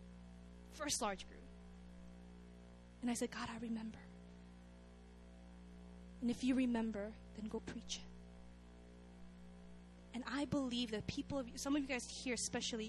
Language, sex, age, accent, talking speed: English, female, 20-39, American, 130 wpm